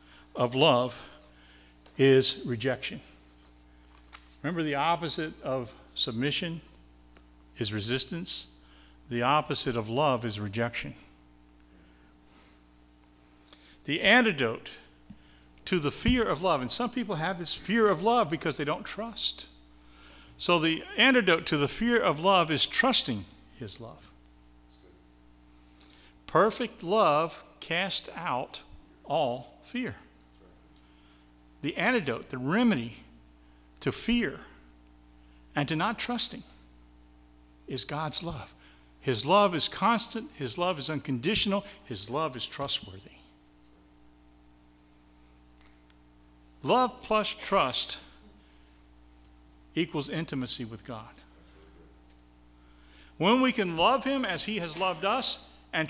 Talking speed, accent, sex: 105 wpm, American, male